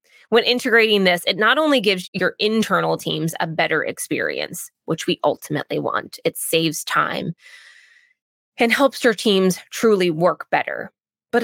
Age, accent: 20-39, American